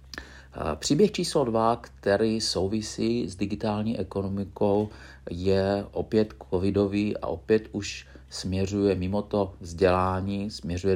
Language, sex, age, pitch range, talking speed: Czech, male, 50-69, 85-105 Hz, 105 wpm